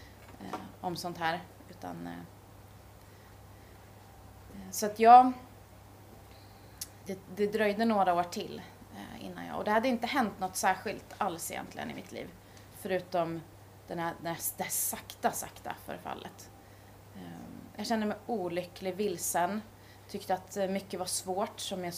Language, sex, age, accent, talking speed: Swedish, female, 30-49, native, 125 wpm